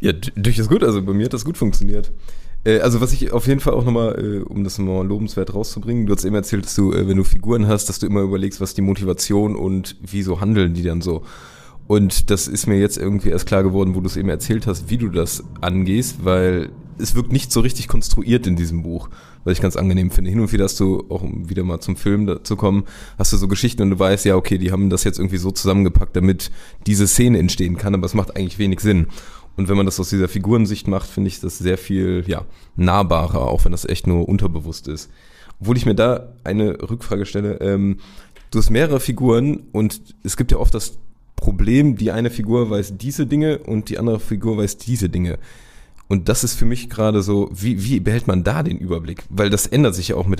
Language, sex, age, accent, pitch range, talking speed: German, male, 20-39, German, 95-110 Hz, 235 wpm